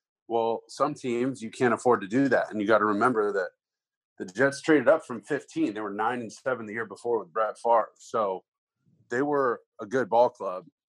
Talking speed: 210 wpm